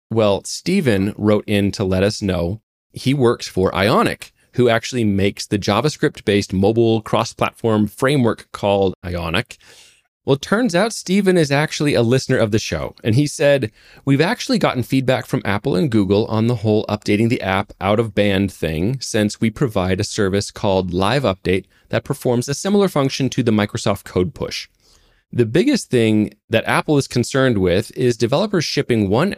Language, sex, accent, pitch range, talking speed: English, male, American, 100-130 Hz, 180 wpm